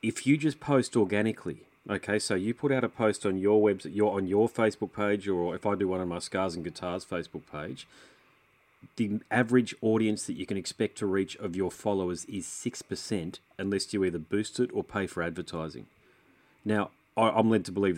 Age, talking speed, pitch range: 30-49, 200 wpm, 95-115 Hz